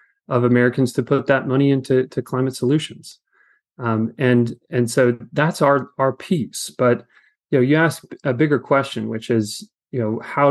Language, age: English, 30-49